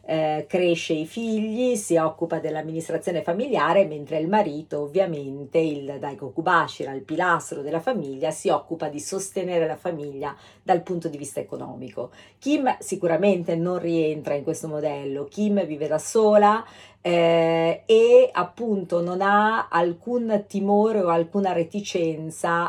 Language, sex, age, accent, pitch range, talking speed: Italian, female, 40-59, native, 155-190 Hz, 135 wpm